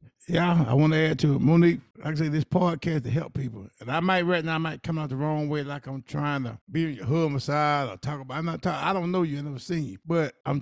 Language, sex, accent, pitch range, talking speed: English, male, American, 155-215 Hz, 310 wpm